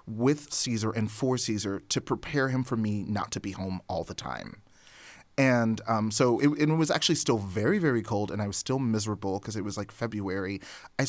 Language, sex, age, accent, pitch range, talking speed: English, male, 30-49, American, 100-130 Hz, 210 wpm